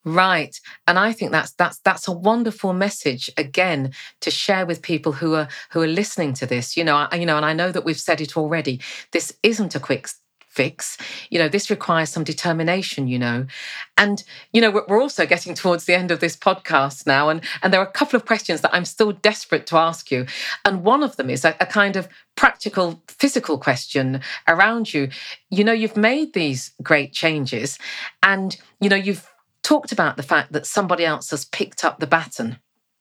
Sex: female